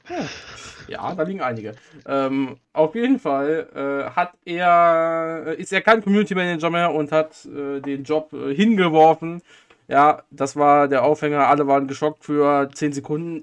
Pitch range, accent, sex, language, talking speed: 135-155 Hz, German, male, German, 155 wpm